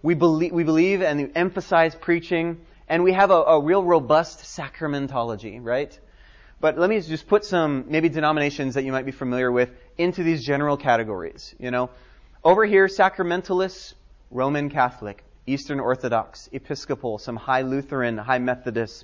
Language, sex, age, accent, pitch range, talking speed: English, male, 30-49, American, 125-170 Hz, 150 wpm